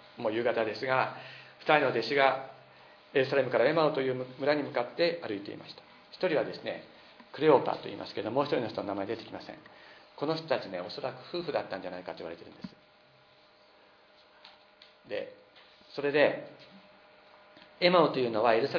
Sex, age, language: male, 40-59, Japanese